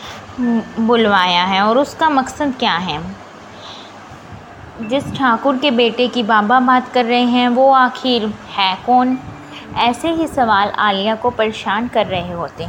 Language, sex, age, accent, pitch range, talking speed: Hindi, female, 20-39, native, 215-260 Hz, 140 wpm